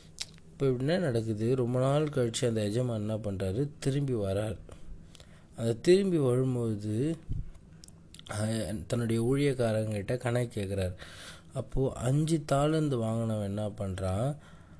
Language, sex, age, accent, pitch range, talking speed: Tamil, male, 20-39, native, 100-130 Hz, 100 wpm